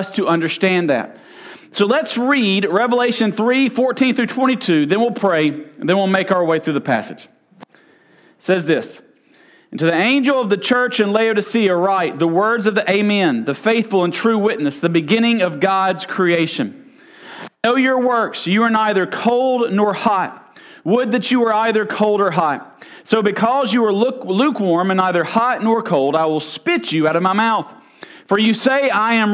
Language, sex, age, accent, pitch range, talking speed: English, male, 40-59, American, 185-240 Hz, 190 wpm